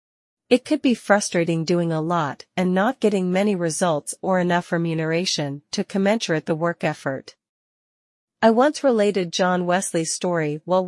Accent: American